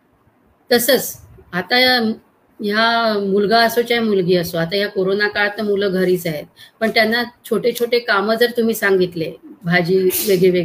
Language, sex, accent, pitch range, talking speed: Marathi, female, native, 190-240 Hz, 120 wpm